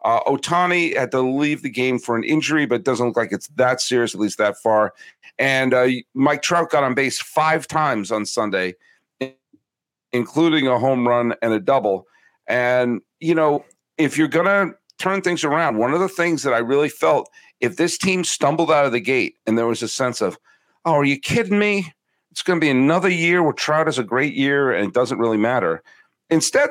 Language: English